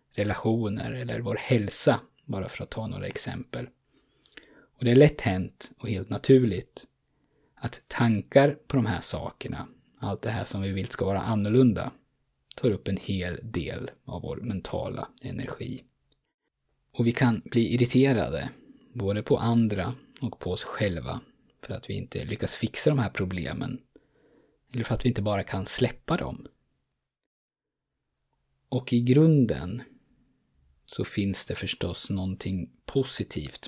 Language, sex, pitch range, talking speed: Swedish, male, 95-125 Hz, 145 wpm